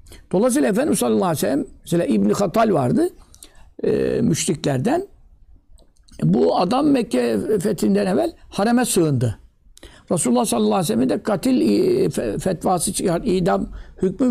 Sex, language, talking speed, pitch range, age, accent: male, Turkish, 125 wpm, 170-230 Hz, 60-79, native